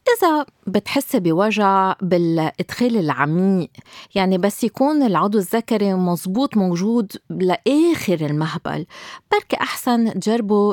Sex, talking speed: female, 95 wpm